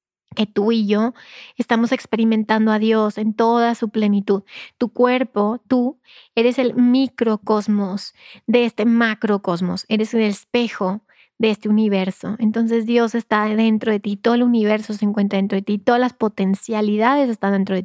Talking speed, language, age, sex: 160 wpm, Spanish, 30-49, female